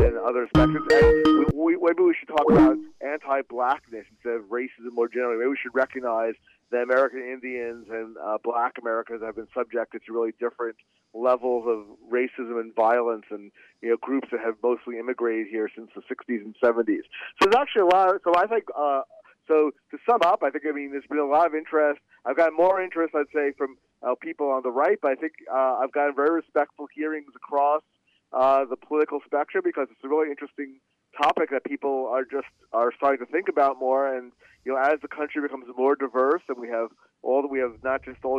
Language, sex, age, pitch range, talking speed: English, male, 40-59, 125-155 Hz, 210 wpm